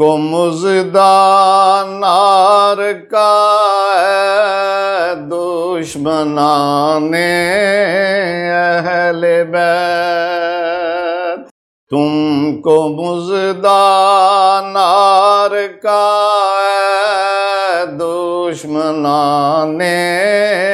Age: 50-69